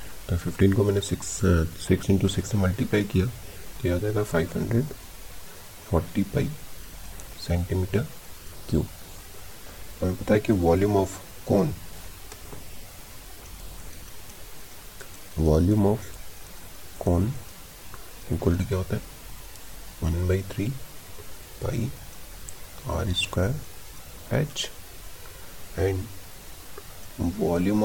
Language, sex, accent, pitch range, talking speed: Hindi, male, native, 85-105 Hz, 85 wpm